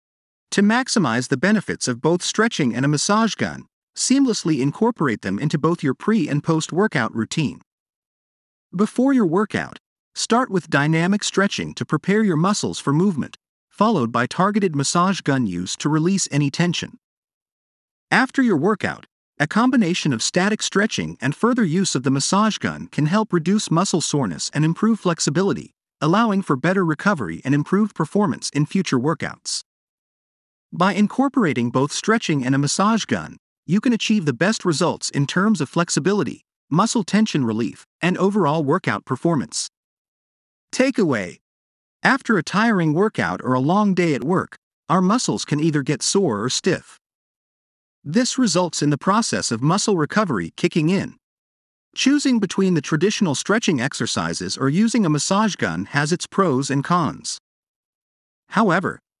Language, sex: English, male